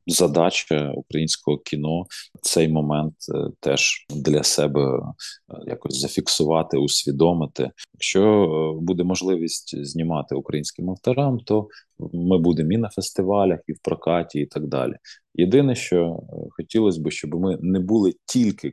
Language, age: Ukrainian, 20-39